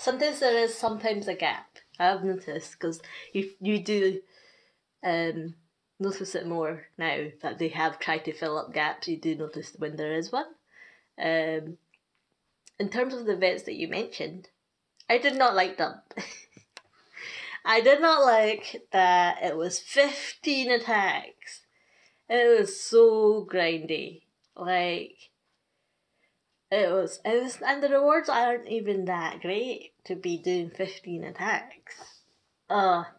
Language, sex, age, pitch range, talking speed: English, female, 20-39, 170-255 Hz, 140 wpm